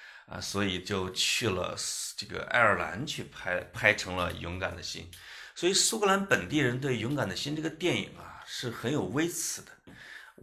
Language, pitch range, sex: Chinese, 95-130 Hz, male